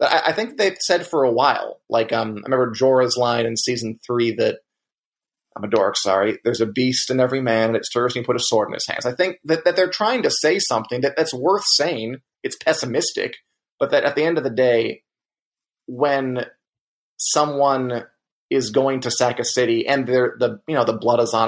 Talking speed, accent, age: 215 wpm, American, 30-49